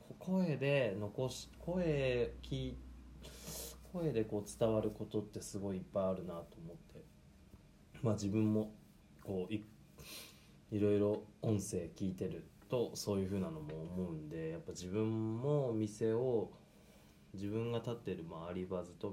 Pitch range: 90-115 Hz